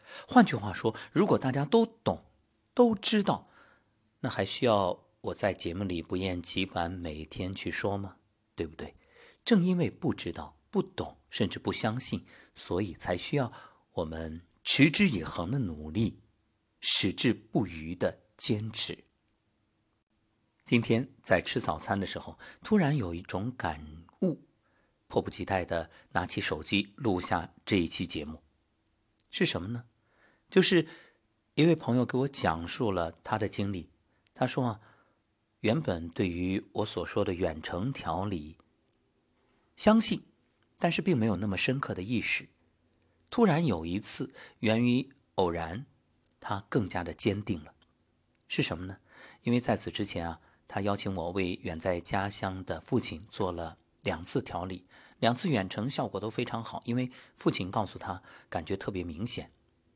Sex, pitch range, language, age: male, 90-125 Hz, Chinese, 50-69